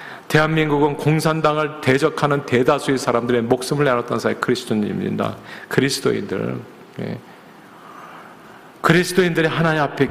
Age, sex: 40-59, male